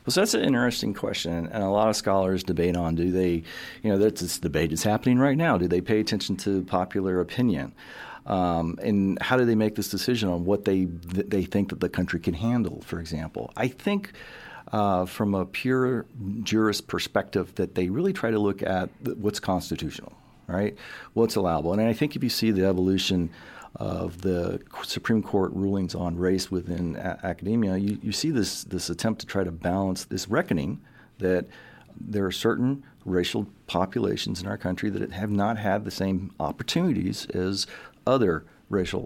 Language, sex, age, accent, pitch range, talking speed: English, male, 40-59, American, 90-105 Hz, 185 wpm